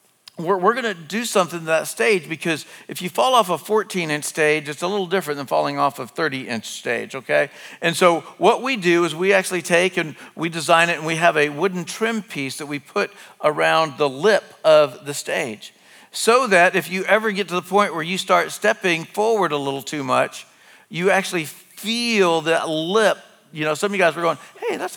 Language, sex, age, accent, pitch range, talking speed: English, male, 50-69, American, 160-210 Hz, 215 wpm